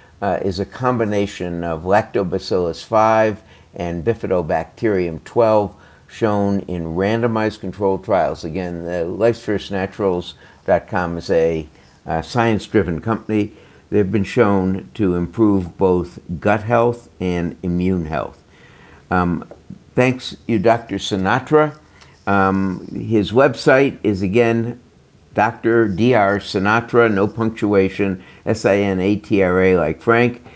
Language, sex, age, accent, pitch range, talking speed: English, male, 60-79, American, 90-115 Hz, 100 wpm